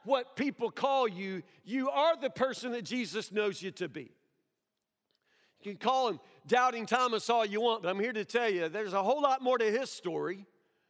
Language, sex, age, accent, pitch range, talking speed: English, male, 50-69, American, 205-275 Hz, 205 wpm